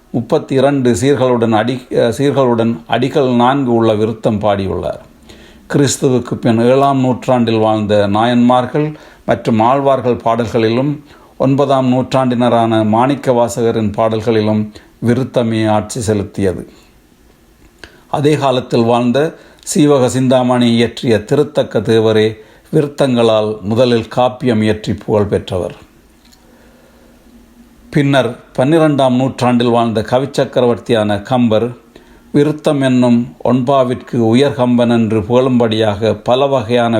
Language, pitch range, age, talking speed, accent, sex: Tamil, 110-135 Hz, 50-69, 90 wpm, native, male